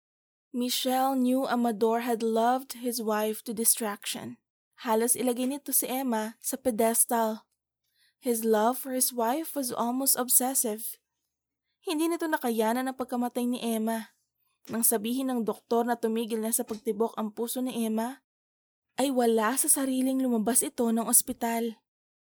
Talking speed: 140 wpm